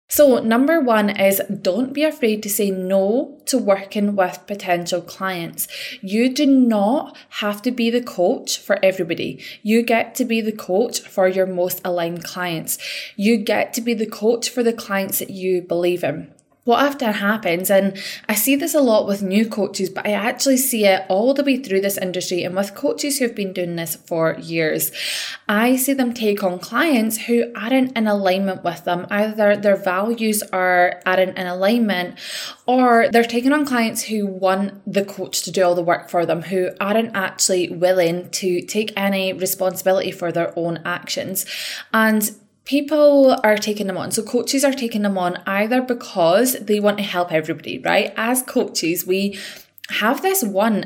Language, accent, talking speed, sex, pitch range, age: English, British, 185 wpm, female, 185-235 Hz, 10-29